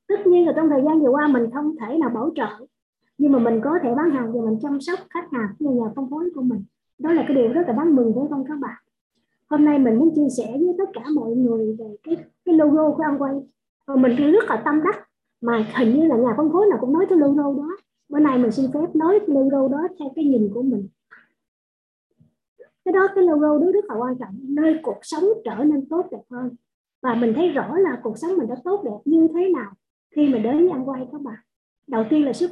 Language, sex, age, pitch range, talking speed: Vietnamese, male, 20-39, 245-330 Hz, 255 wpm